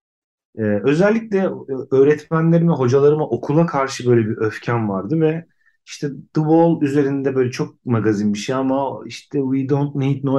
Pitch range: 110-155 Hz